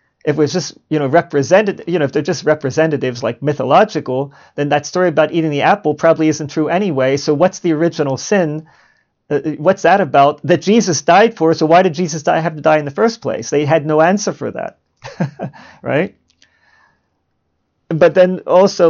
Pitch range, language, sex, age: 135-180 Hz, English, male, 40-59